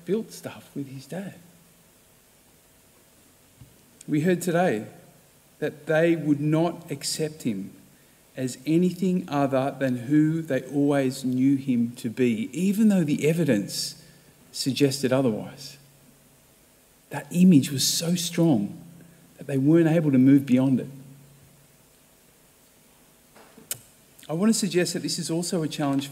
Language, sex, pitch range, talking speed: English, male, 145-185 Hz, 125 wpm